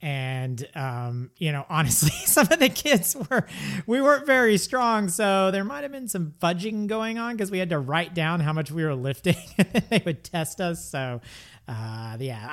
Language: English